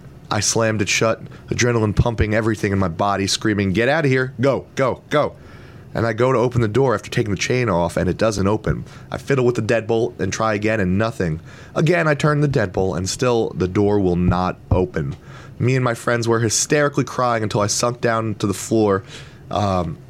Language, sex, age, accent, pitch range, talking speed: English, male, 20-39, American, 100-130 Hz, 210 wpm